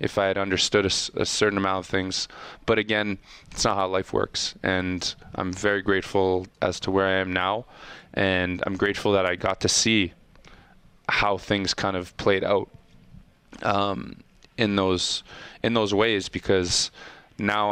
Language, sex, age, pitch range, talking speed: English, male, 20-39, 95-105 Hz, 165 wpm